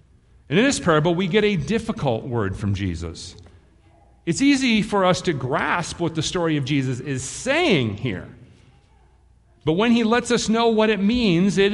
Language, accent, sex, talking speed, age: English, American, male, 180 wpm, 40-59